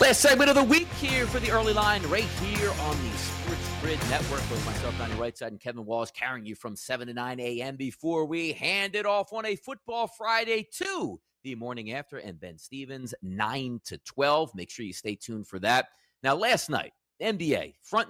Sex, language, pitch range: male, English, 105-155 Hz